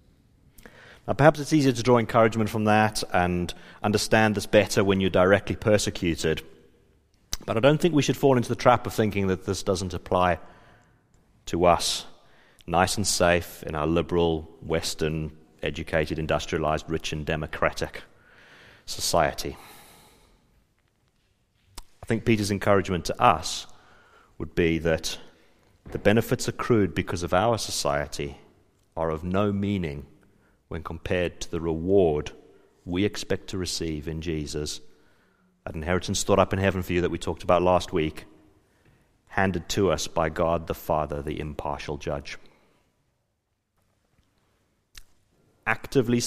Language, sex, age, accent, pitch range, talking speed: English, male, 40-59, British, 80-105 Hz, 135 wpm